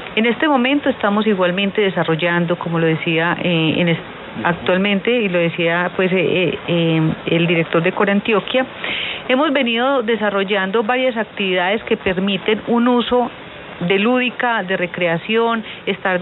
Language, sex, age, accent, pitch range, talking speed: Spanish, female, 40-59, Colombian, 175-215 Hz, 140 wpm